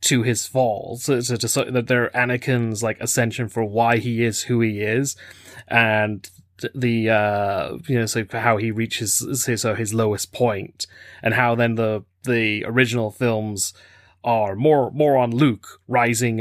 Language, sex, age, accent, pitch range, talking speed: English, male, 30-49, British, 110-125 Hz, 175 wpm